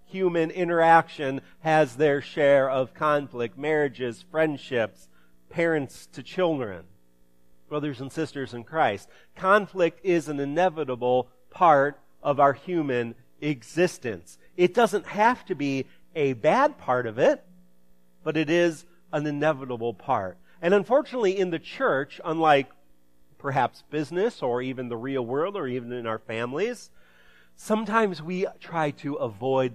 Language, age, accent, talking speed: English, 40-59, American, 130 wpm